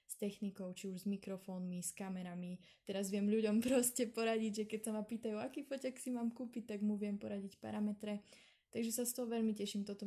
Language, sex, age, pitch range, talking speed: Slovak, female, 20-39, 190-215 Hz, 210 wpm